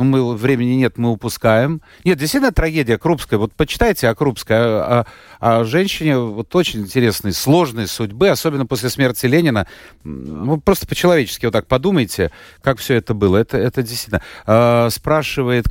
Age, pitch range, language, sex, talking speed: 40-59, 115-160 Hz, Russian, male, 155 wpm